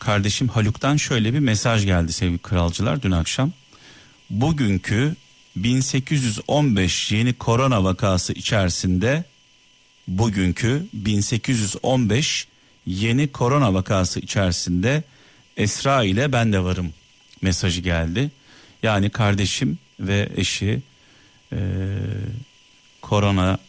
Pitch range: 95-125 Hz